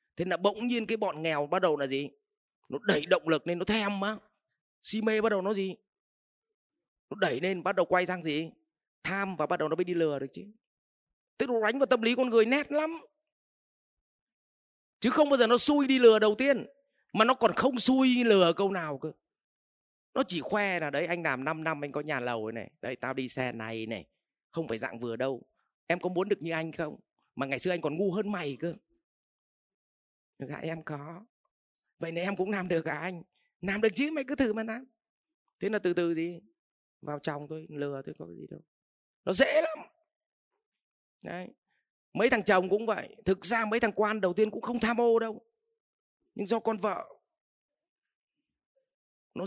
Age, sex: 30-49, male